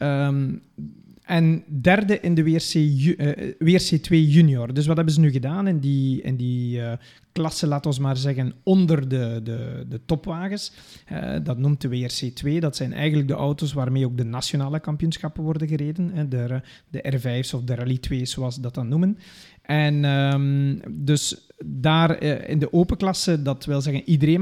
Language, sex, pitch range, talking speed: Dutch, male, 135-175 Hz, 175 wpm